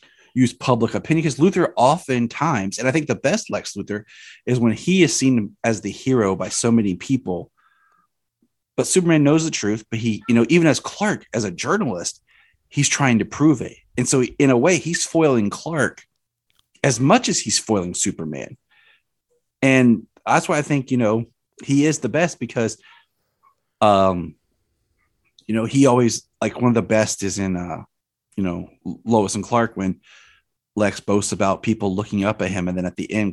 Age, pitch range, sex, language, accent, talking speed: 30-49, 100-135 Hz, male, English, American, 185 wpm